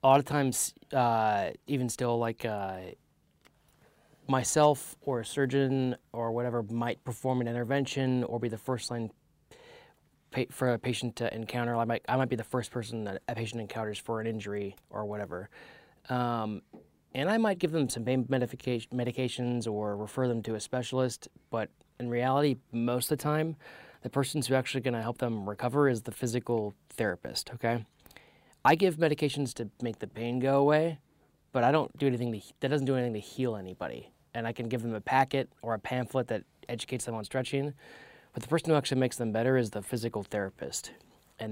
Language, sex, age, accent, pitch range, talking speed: English, male, 30-49, American, 115-135 Hz, 190 wpm